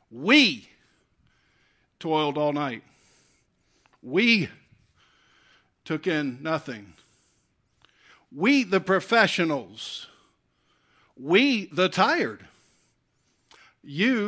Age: 50-69